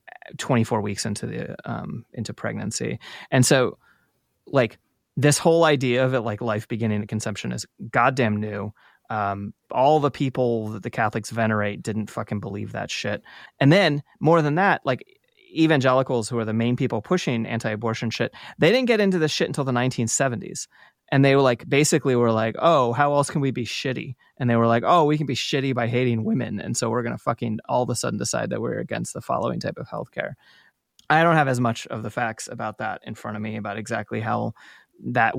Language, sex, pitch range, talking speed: English, male, 110-145 Hz, 205 wpm